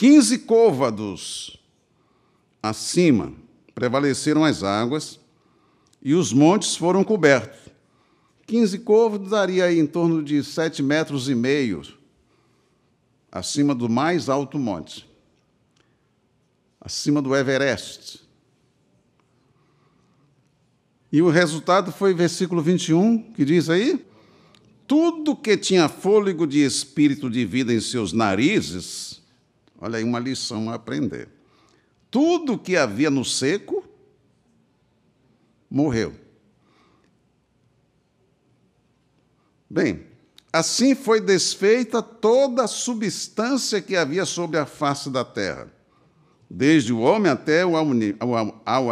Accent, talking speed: Brazilian, 100 wpm